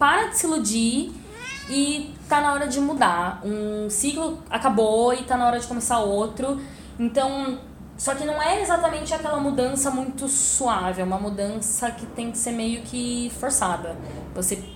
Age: 10-29